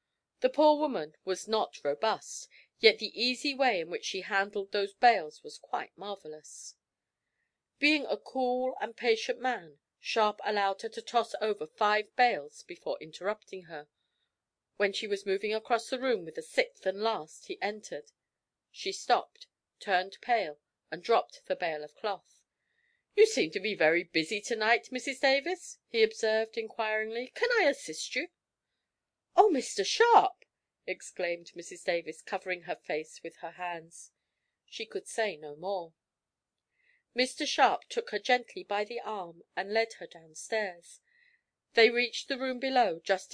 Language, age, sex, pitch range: English, 40-59, female, 190-265 Hz